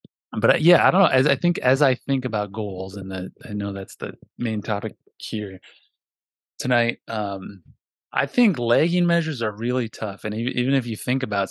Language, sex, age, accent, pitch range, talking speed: English, male, 20-39, American, 100-130 Hz, 195 wpm